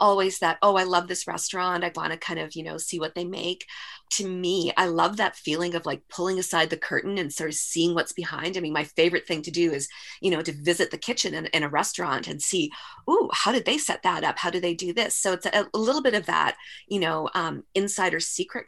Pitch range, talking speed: 170-205 Hz, 255 wpm